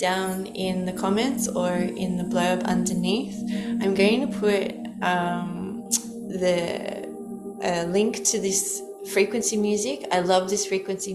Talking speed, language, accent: 135 wpm, English, Australian